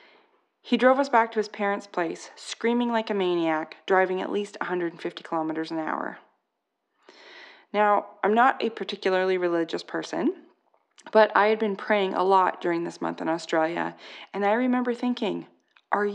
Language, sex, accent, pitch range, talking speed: English, female, American, 190-250 Hz, 160 wpm